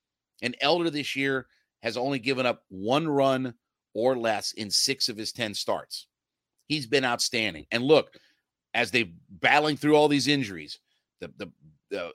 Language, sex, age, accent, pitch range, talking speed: English, male, 40-59, American, 120-155 Hz, 165 wpm